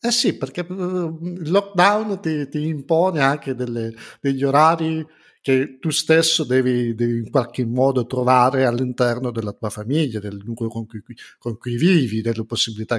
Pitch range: 120-150 Hz